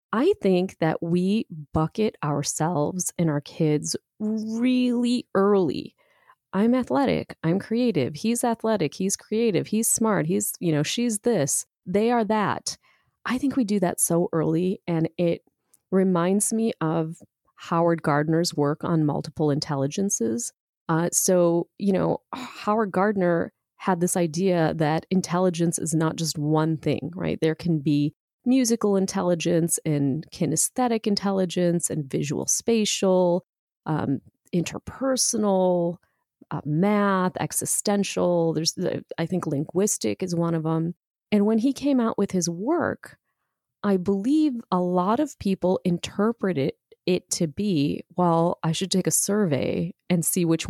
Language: English